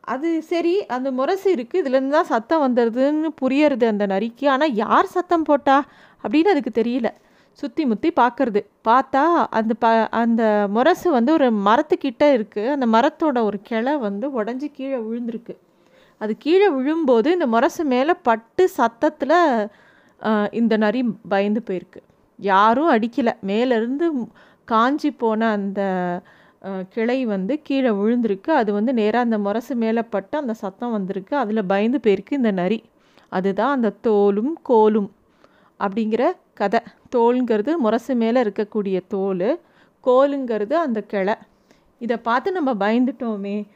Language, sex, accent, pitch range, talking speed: Tamil, female, native, 210-280 Hz, 130 wpm